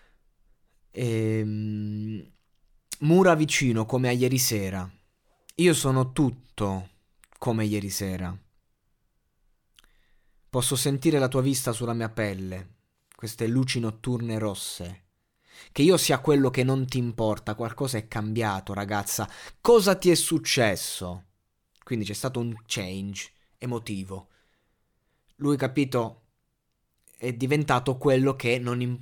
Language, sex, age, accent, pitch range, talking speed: Italian, male, 20-39, native, 110-150 Hz, 110 wpm